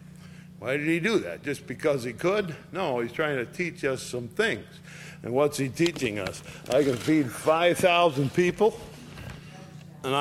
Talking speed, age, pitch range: 165 wpm, 60-79, 135-170 Hz